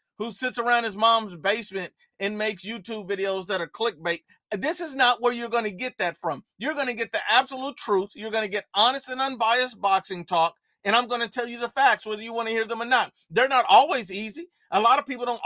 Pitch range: 210-260 Hz